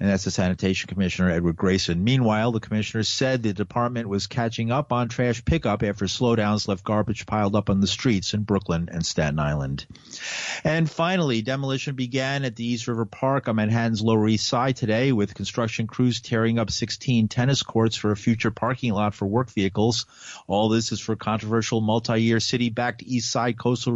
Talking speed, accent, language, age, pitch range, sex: 190 wpm, American, English, 50-69, 105-125 Hz, male